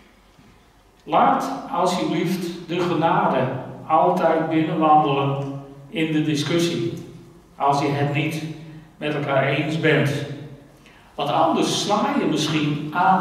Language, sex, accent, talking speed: Dutch, male, Dutch, 105 wpm